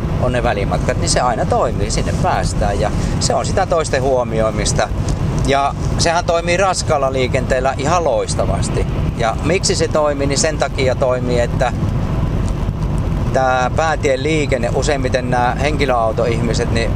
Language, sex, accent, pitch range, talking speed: Finnish, male, native, 115-150 Hz, 135 wpm